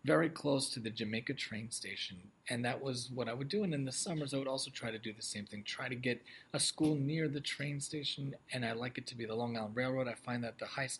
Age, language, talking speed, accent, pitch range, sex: 30-49, English, 280 wpm, American, 120-145 Hz, male